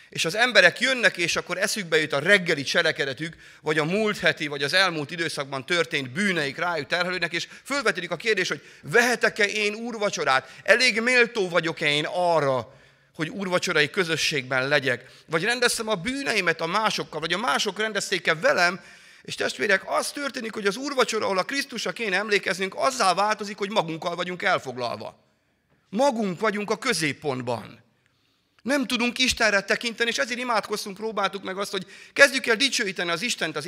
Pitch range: 145-225 Hz